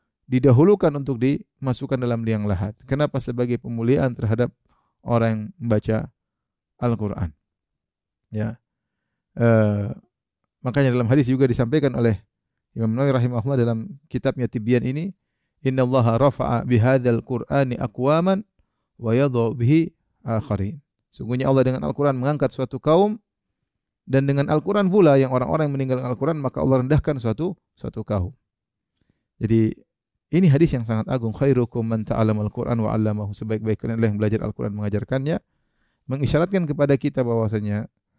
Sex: male